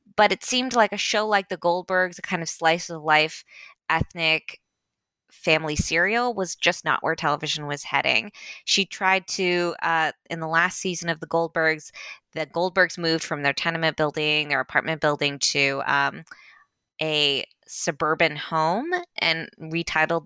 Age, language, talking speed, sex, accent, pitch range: 20-39, English, 155 wpm, female, American, 155-195 Hz